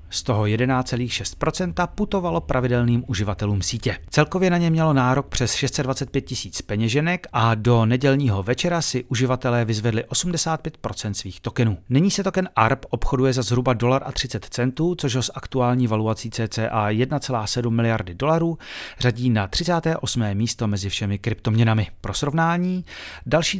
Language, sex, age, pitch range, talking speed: Czech, male, 40-59, 110-140 Hz, 135 wpm